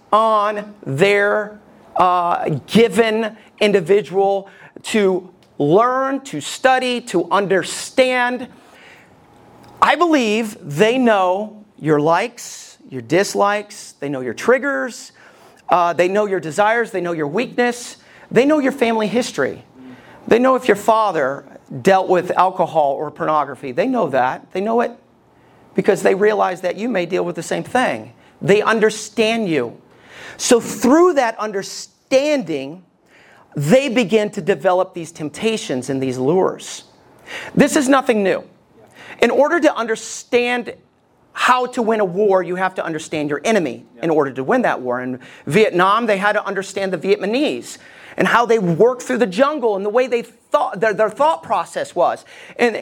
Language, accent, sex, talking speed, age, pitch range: English, American, male, 150 wpm, 40-59, 185-250 Hz